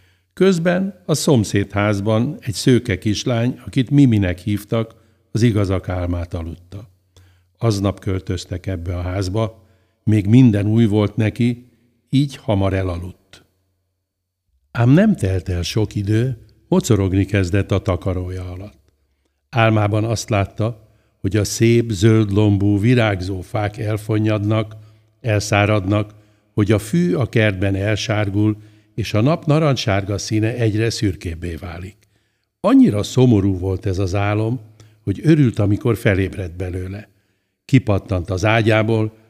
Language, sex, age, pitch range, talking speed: Hungarian, male, 60-79, 95-115 Hz, 120 wpm